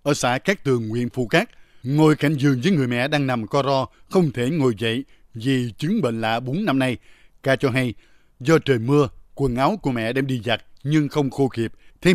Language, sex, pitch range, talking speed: Vietnamese, male, 115-145 Hz, 225 wpm